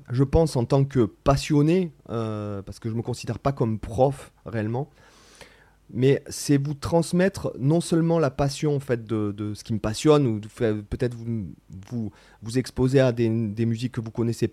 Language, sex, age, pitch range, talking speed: French, male, 30-49, 115-155 Hz, 200 wpm